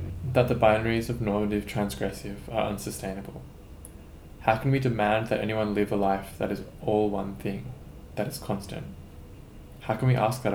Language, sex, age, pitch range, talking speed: English, male, 20-39, 85-115 Hz, 170 wpm